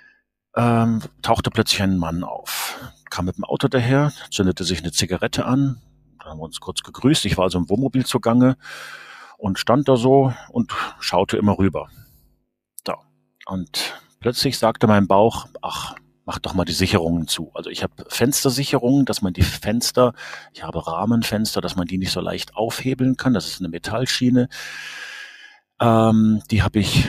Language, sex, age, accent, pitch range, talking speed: German, male, 40-59, German, 95-125 Hz, 165 wpm